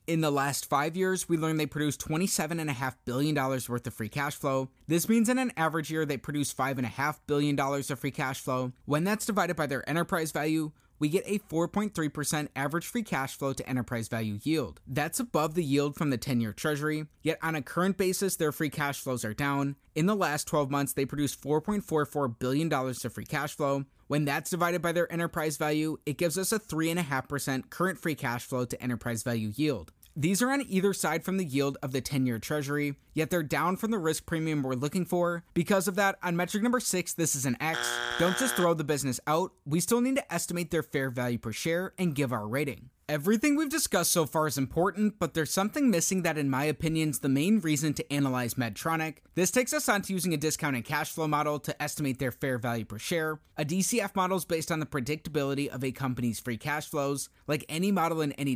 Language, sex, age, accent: English, male, 20-39, American